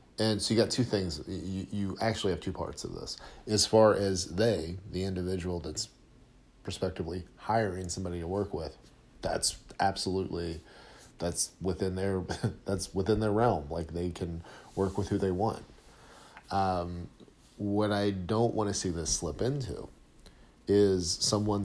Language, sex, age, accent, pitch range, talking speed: English, male, 40-59, American, 85-100 Hz, 155 wpm